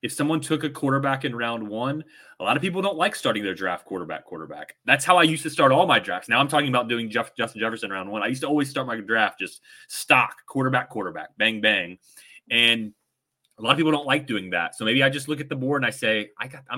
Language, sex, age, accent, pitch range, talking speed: English, male, 30-49, American, 105-140 Hz, 265 wpm